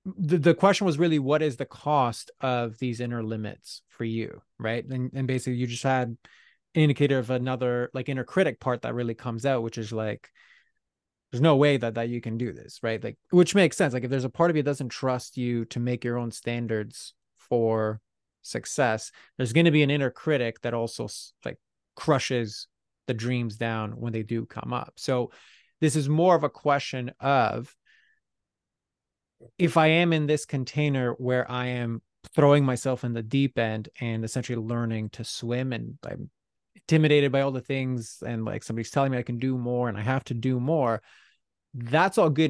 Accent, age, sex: American, 30-49, male